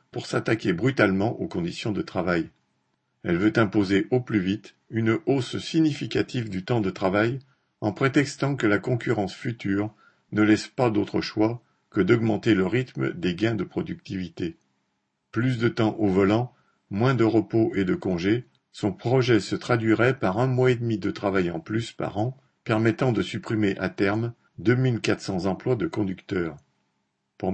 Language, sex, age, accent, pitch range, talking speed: French, male, 50-69, French, 100-125 Hz, 165 wpm